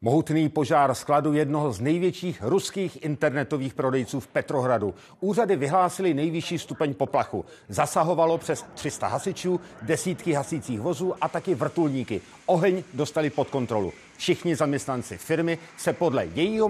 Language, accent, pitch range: Czech, native, 145-190 Hz